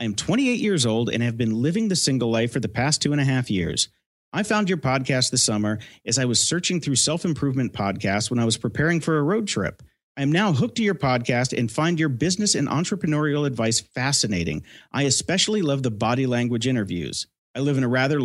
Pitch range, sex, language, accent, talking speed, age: 110-150 Hz, male, English, American, 225 wpm, 40-59